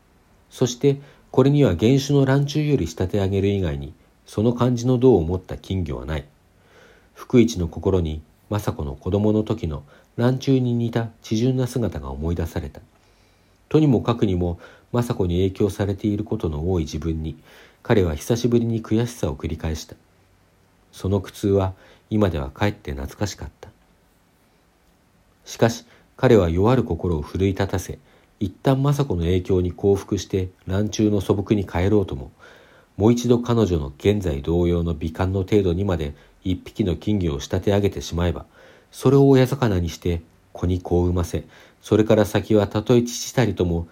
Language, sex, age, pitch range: Japanese, male, 50-69, 85-110 Hz